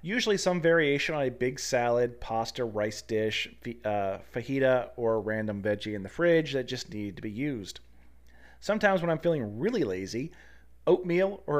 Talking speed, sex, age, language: 165 wpm, male, 30-49, English